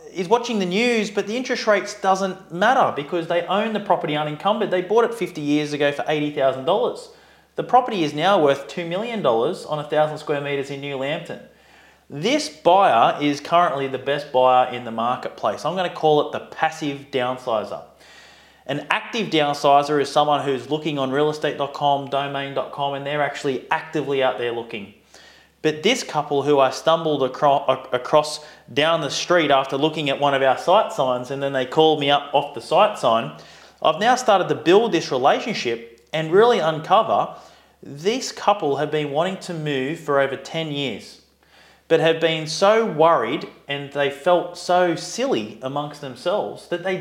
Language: English